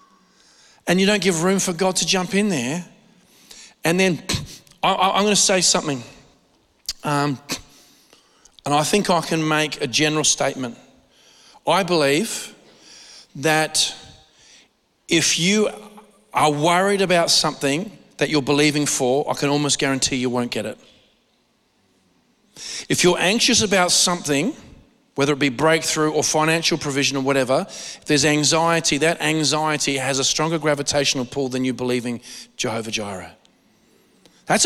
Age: 40-59